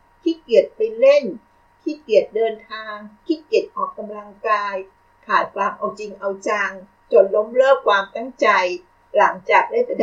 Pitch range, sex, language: 200-335 Hz, female, Thai